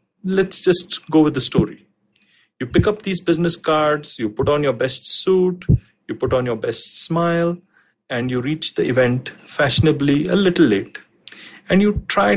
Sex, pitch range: male, 145-190 Hz